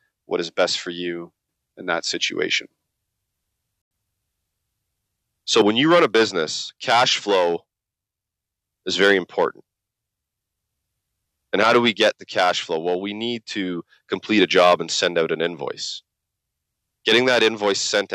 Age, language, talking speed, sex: 30-49, English, 140 wpm, male